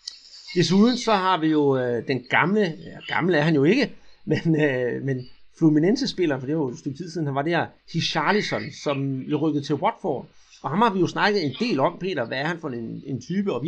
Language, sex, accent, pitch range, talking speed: Danish, male, native, 135-180 Hz, 230 wpm